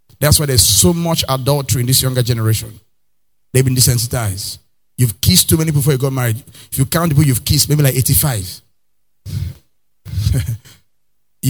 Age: 30-49